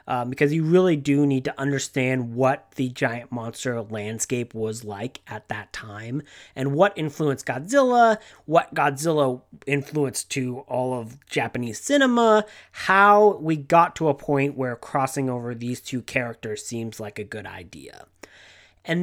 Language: English